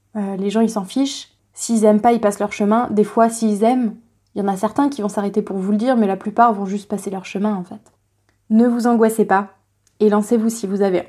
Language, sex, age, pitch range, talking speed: French, female, 20-39, 205-245 Hz, 260 wpm